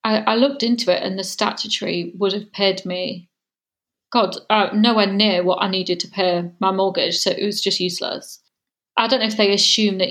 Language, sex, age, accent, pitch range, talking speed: English, female, 30-49, British, 195-225 Hz, 210 wpm